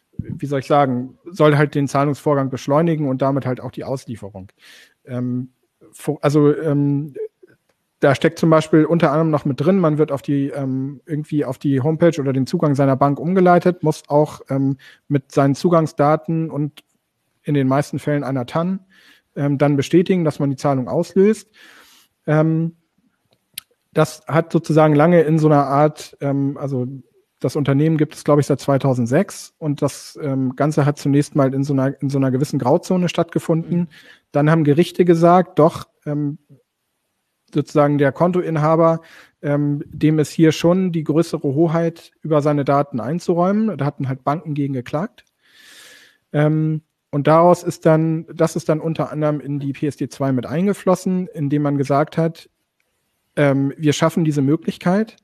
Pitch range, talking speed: 140-165 Hz, 150 wpm